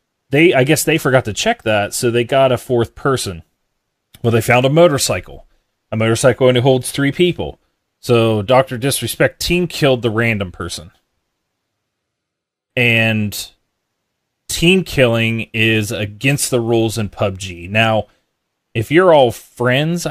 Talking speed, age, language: 140 wpm, 30-49, English